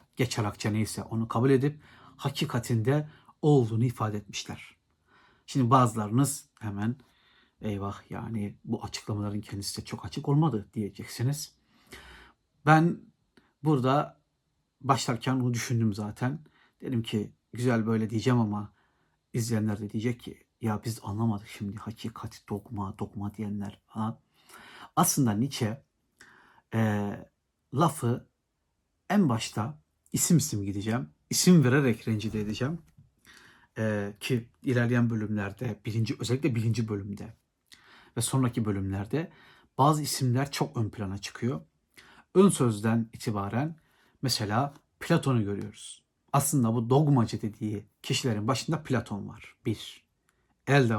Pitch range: 105-135 Hz